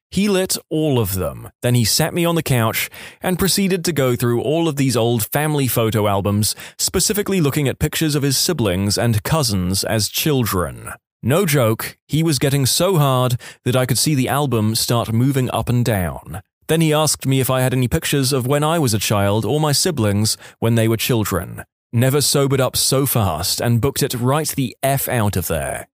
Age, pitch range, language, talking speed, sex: 20-39, 110-150 Hz, English, 205 wpm, male